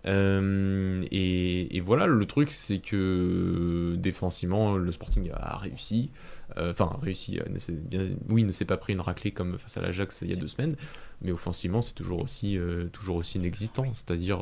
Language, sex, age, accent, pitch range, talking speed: French, male, 20-39, French, 90-110 Hz, 190 wpm